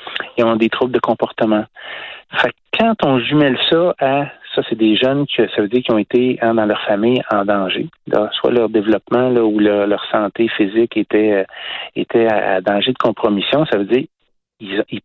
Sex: male